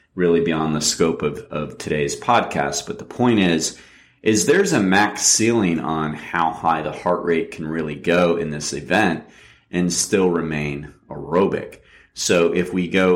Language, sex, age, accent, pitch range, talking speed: English, male, 30-49, American, 75-90 Hz, 170 wpm